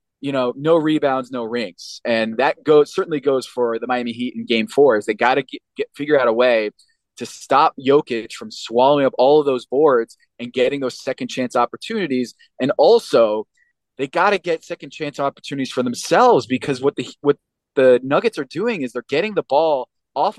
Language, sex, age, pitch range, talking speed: English, male, 20-39, 130-180 Hz, 195 wpm